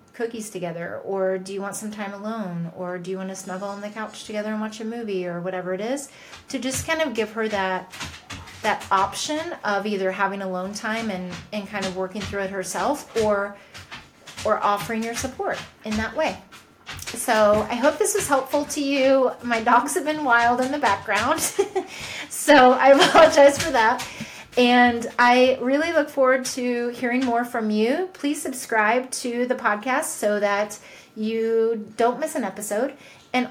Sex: female